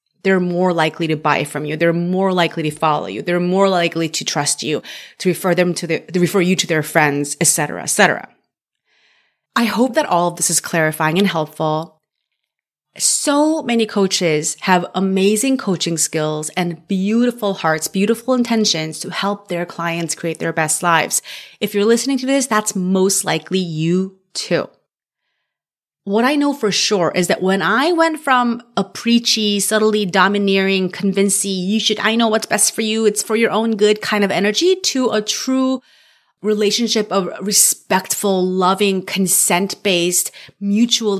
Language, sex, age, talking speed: English, female, 30-49, 170 wpm